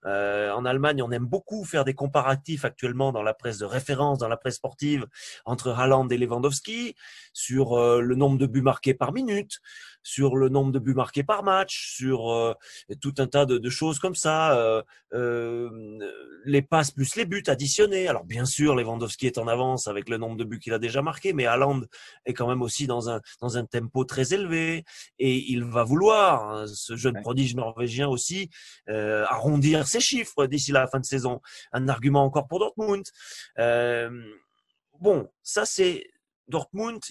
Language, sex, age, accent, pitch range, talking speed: French, male, 20-39, French, 120-155 Hz, 190 wpm